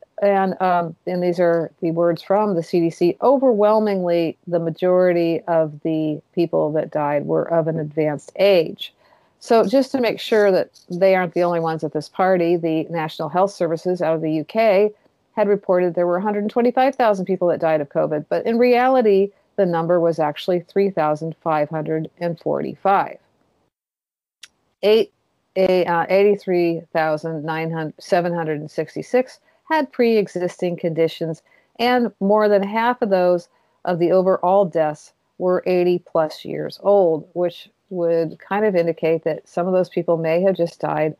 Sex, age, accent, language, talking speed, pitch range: female, 50-69, American, English, 155 wpm, 165-205 Hz